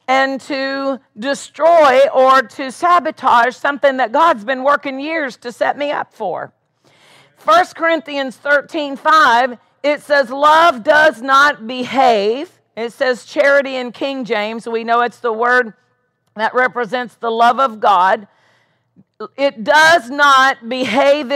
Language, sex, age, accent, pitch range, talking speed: English, female, 50-69, American, 230-285 Hz, 135 wpm